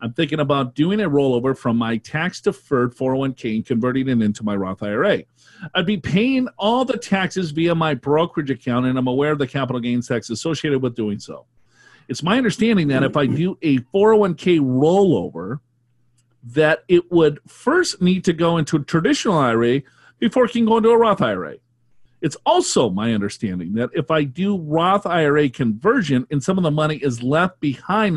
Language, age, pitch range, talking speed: English, 40-59, 125-180 Hz, 185 wpm